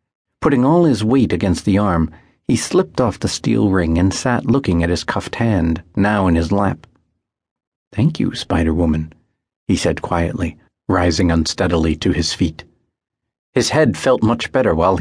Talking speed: 165 wpm